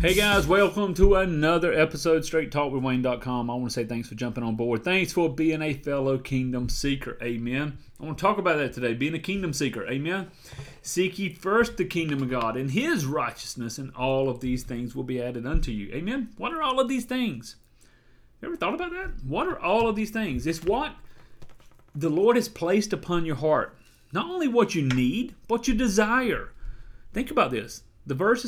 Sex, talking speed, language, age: male, 205 wpm, English, 30-49